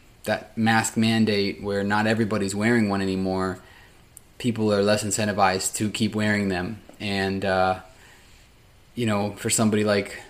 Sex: male